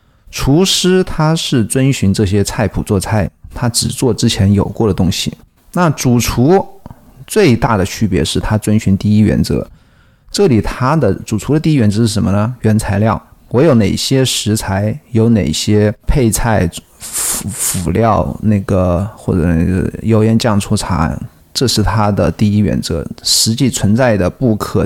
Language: Chinese